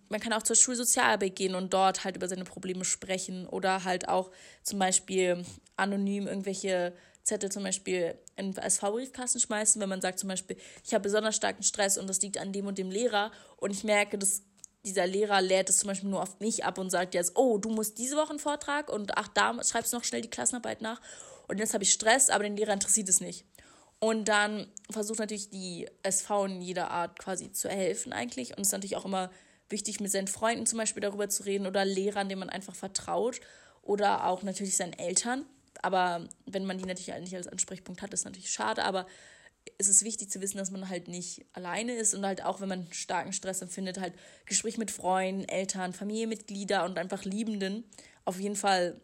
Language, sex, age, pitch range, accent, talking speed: German, female, 20-39, 185-215 Hz, German, 210 wpm